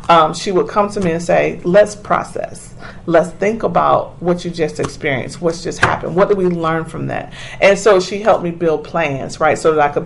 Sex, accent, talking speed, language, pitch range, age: female, American, 225 wpm, English, 155-195 Hz, 40-59